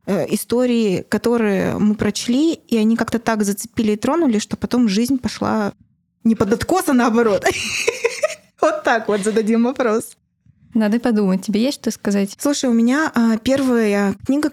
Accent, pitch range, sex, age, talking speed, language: native, 210-270 Hz, female, 20-39, 150 wpm, Russian